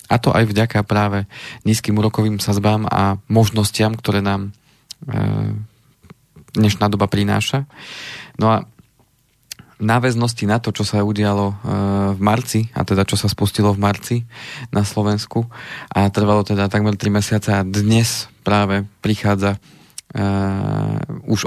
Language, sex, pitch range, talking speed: Slovak, male, 100-115 Hz, 135 wpm